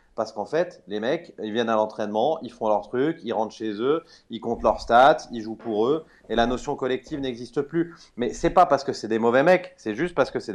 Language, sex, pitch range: French, male, 110-135 Hz